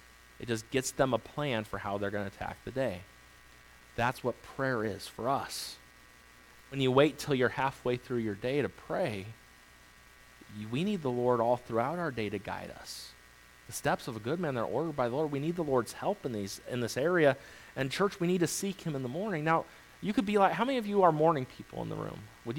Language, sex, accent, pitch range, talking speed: English, male, American, 115-185 Hz, 240 wpm